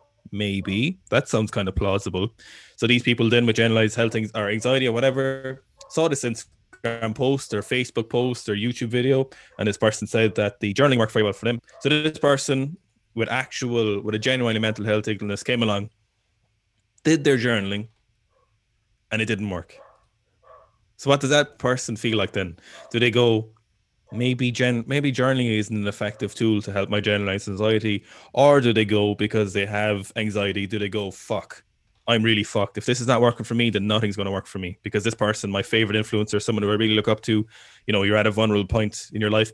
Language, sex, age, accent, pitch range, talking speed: English, male, 20-39, Irish, 105-120 Hz, 205 wpm